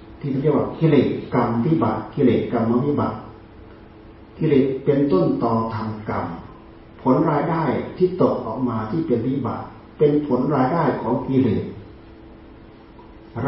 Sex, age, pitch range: male, 40-59, 110-130 Hz